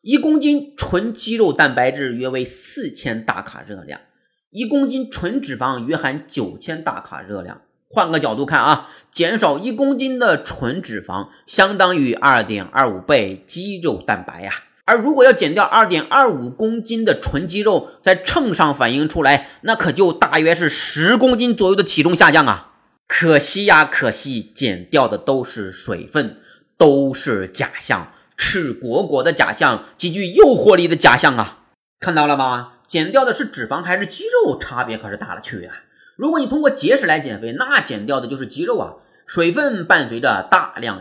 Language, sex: Chinese, male